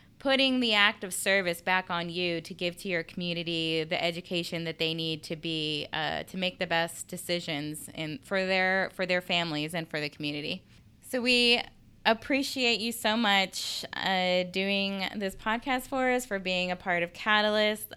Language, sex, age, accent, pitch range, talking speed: English, female, 20-39, American, 170-210 Hz, 180 wpm